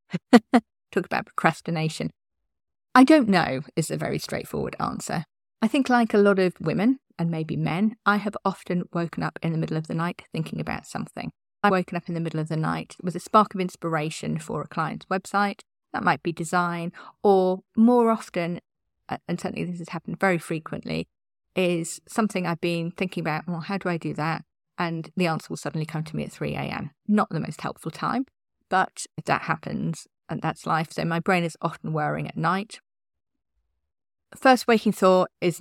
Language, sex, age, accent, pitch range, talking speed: English, female, 40-59, British, 155-195 Hz, 190 wpm